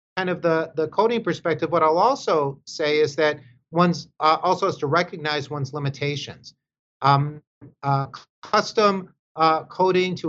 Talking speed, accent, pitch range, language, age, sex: 145 wpm, American, 145-180 Hz, English, 40-59, male